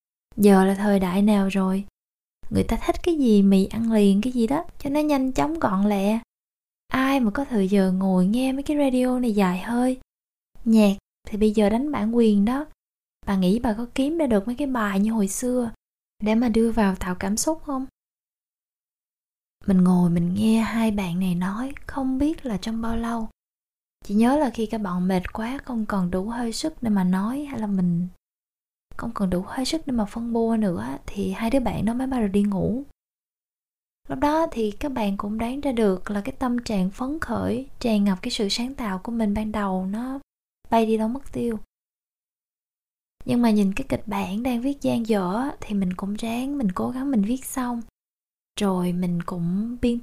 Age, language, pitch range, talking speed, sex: 20-39, Vietnamese, 195-245 Hz, 205 wpm, female